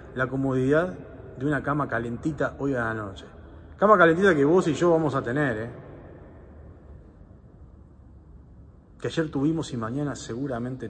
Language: Spanish